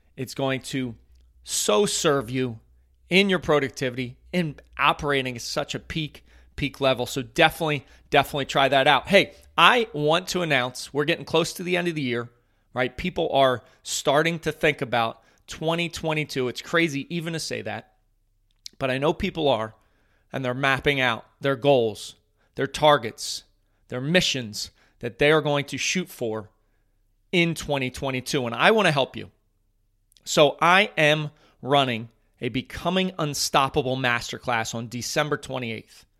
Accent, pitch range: American, 115-160 Hz